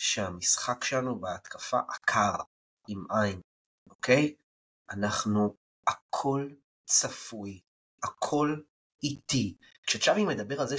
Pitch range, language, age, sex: 115-170 Hz, Hebrew, 30-49, male